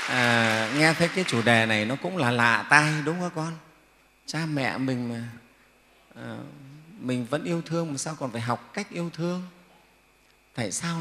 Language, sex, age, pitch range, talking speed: Vietnamese, male, 30-49, 115-155 Hz, 185 wpm